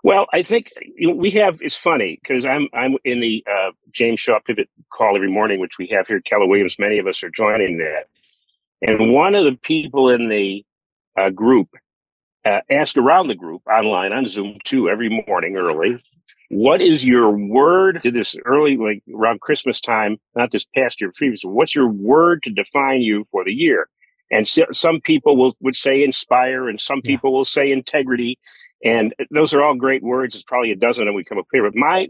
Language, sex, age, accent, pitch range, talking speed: English, male, 50-69, American, 115-180 Hz, 200 wpm